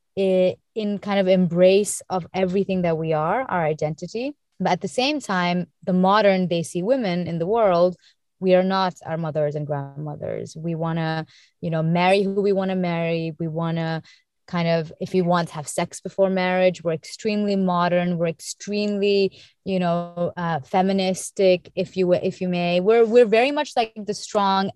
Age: 20-39